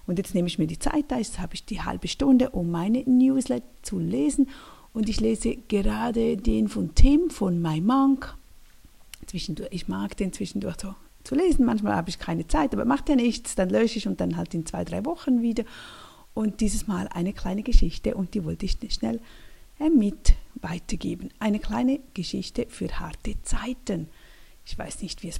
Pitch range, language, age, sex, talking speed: 180-240 Hz, German, 50-69, female, 190 wpm